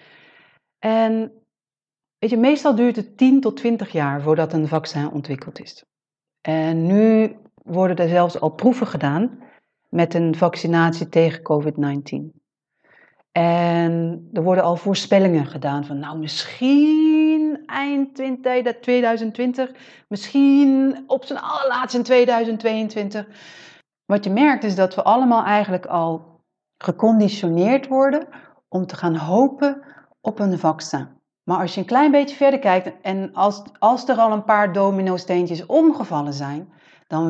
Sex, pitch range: female, 165-235 Hz